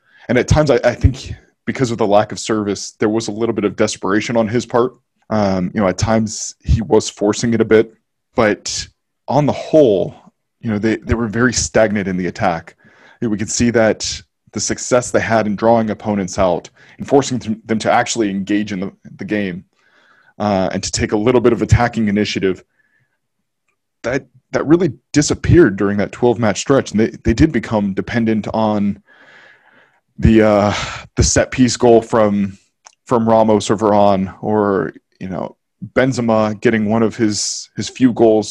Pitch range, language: 105-120 Hz, English